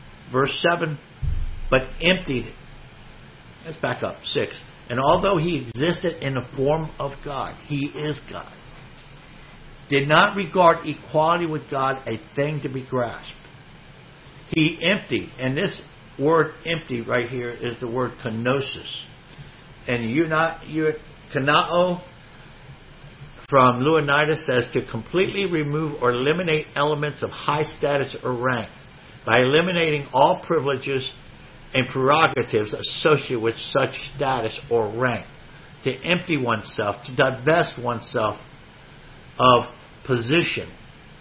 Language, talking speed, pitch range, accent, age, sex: English, 120 wpm, 130-160 Hz, American, 60-79, male